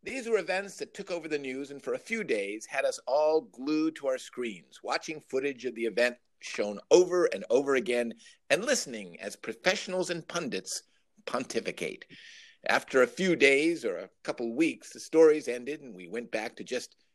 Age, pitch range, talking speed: 50-69, 130-200 Hz, 190 wpm